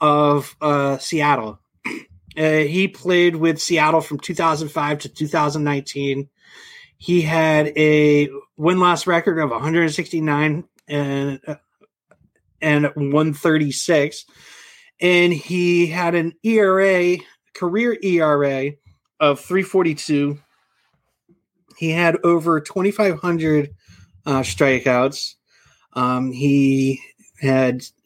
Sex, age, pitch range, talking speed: male, 30-49, 140-170 Hz, 85 wpm